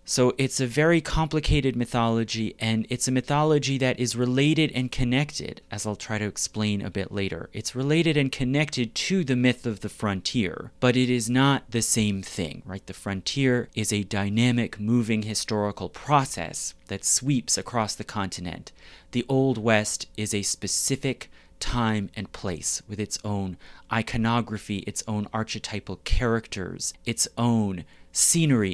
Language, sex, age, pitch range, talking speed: English, male, 30-49, 100-130 Hz, 155 wpm